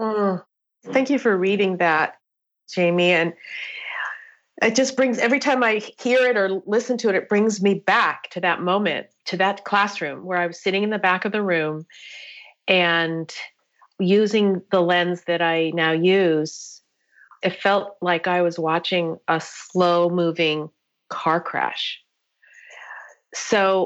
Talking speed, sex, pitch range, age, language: 150 wpm, female, 170-200 Hz, 40-59, English